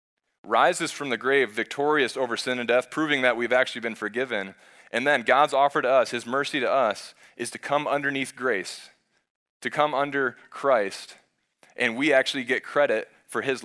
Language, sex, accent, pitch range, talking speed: English, male, American, 120-150 Hz, 180 wpm